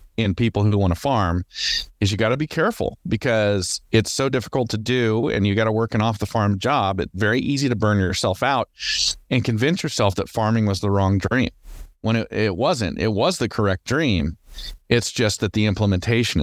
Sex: male